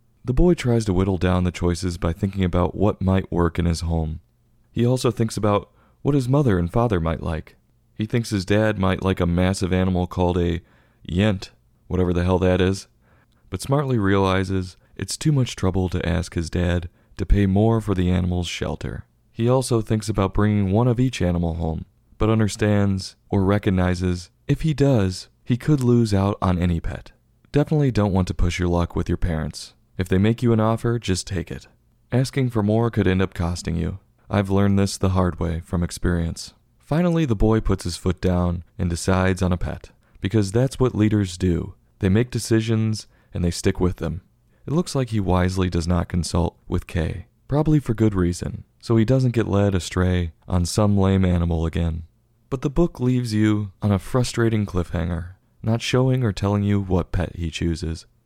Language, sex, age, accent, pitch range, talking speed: English, male, 30-49, American, 90-115 Hz, 195 wpm